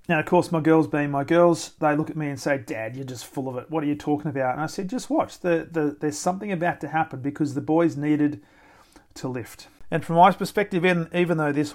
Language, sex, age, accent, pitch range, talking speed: English, male, 40-59, Australian, 135-160 Hz, 255 wpm